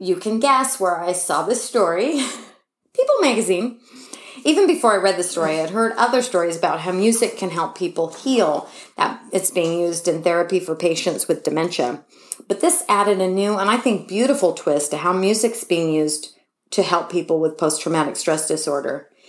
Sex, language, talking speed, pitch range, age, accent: female, English, 190 wpm, 165-210 Hz, 30-49, American